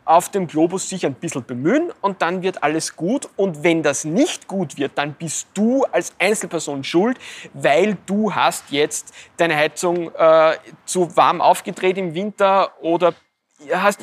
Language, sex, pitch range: German, male, 155-195 Hz